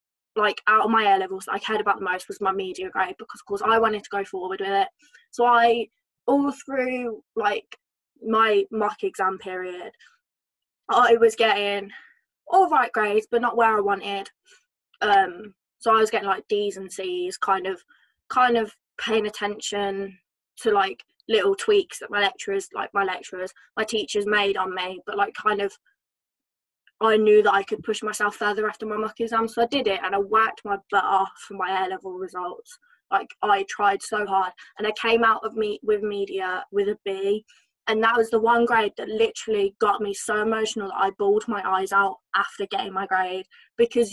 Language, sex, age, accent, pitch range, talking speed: English, female, 20-39, British, 200-240 Hz, 195 wpm